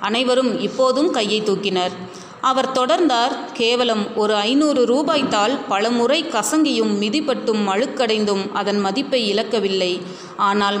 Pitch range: 200-255 Hz